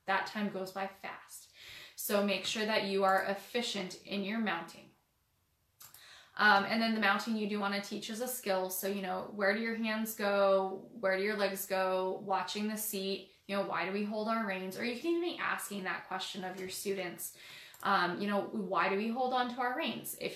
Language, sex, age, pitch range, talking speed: English, female, 10-29, 195-225 Hz, 220 wpm